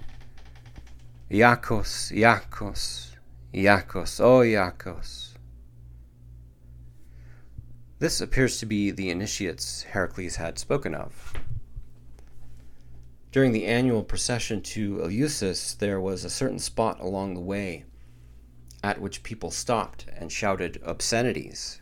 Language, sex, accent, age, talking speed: English, male, American, 40-59, 100 wpm